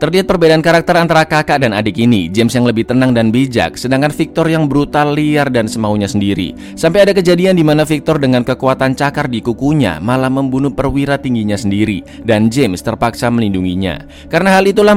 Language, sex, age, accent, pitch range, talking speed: Indonesian, male, 20-39, native, 105-150 Hz, 175 wpm